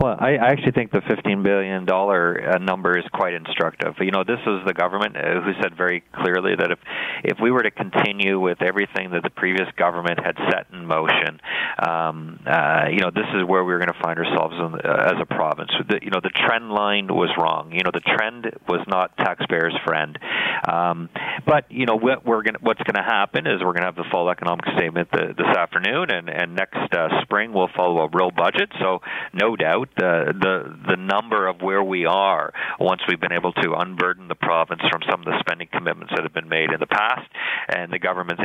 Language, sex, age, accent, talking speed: English, male, 40-59, American, 220 wpm